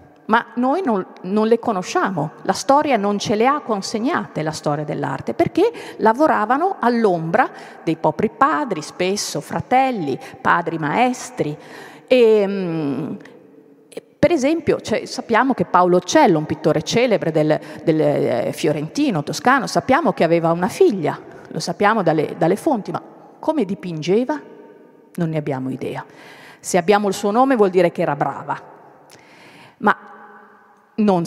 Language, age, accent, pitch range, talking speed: Italian, 40-59, native, 165-230 Hz, 135 wpm